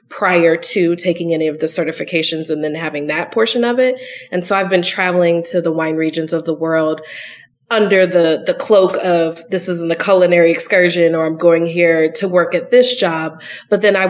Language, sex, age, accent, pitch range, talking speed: English, female, 20-39, American, 165-205 Hz, 205 wpm